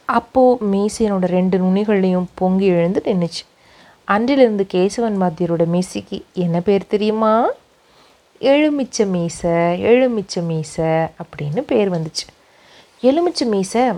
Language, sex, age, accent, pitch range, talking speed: Tamil, female, 30-49, native, 175-230 Hz, 100 wpm